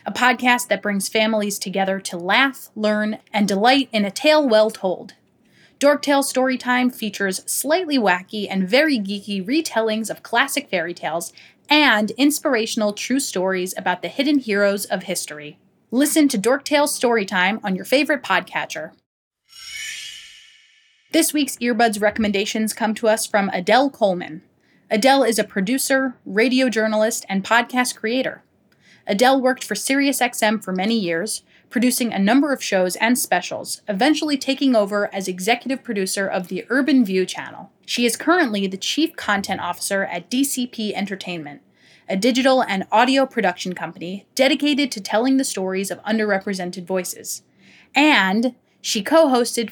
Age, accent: 30-49, American